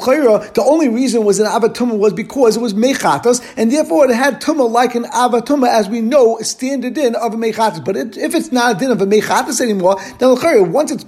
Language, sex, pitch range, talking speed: English, male, 225-275 Hz, 220 wpm